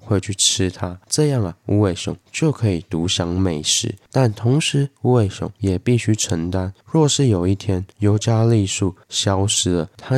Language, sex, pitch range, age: Chinese, male, 95-115 Hz, 20-39